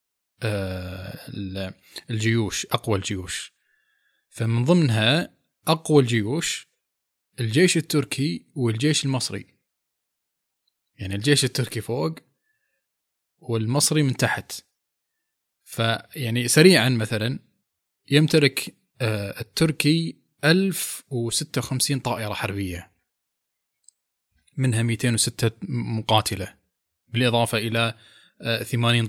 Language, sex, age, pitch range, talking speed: Arabic, male, 20-39, 105-135 Hz, 65 wpm